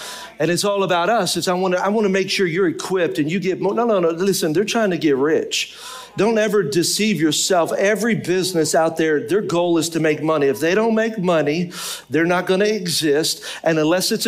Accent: American